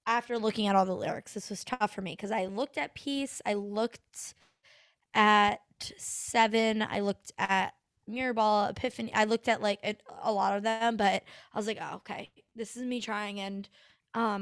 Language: English